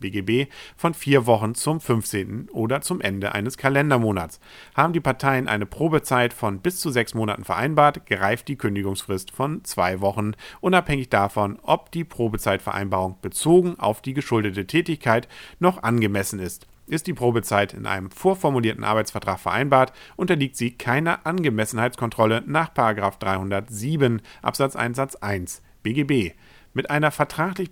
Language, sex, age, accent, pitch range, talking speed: German, male, 50-69, German, 100-145 Hz, 135 wpm